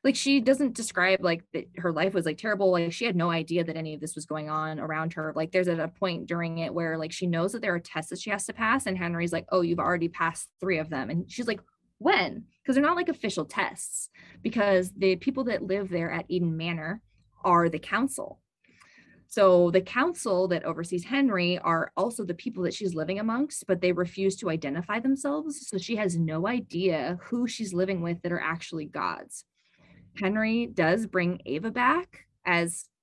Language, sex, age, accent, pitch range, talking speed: English, female, 20-39, American, 165-215 Hz, 210 wpm